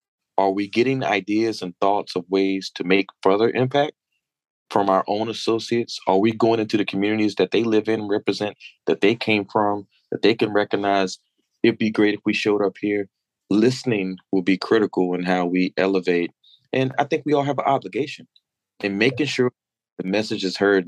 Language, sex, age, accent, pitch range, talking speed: English, male, 30-49, American, 95-110 Hz, 190 wpm